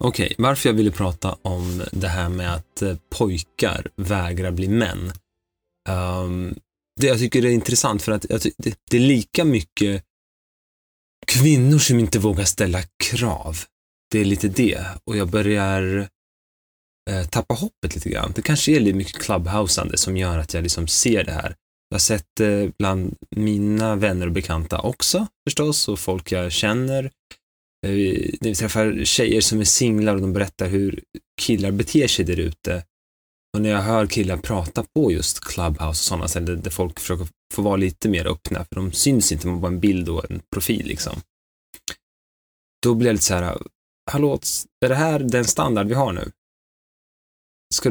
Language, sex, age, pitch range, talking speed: Swedish, male, 20-39, 90-115 Hz, 175 wpm